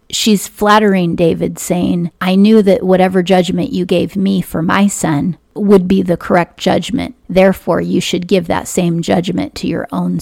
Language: English